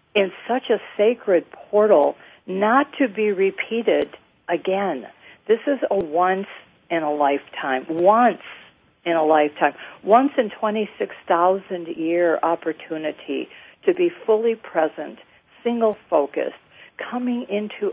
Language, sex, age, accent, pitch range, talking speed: English, female, 50-69, American, 165-200 Hz, 85 wpm